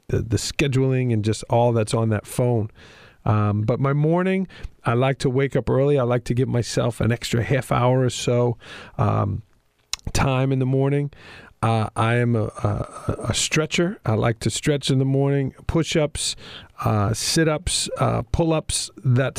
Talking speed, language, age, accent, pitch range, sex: 165 wpm, English, 40-59, American, 115-140 Hz, male